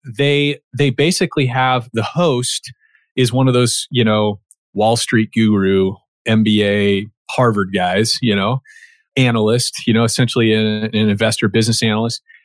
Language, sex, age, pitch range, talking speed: English, male, 30-49, 110-130 Hz, 140 wpm